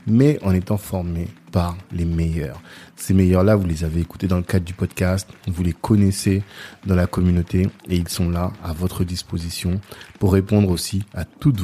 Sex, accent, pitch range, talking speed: male, French, 90-105 Hz, 185 wpm